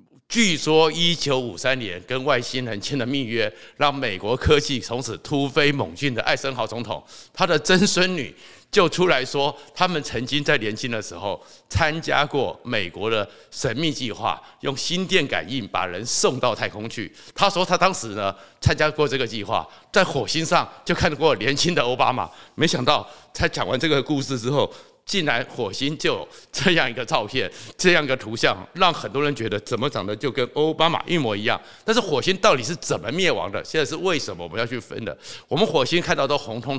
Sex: male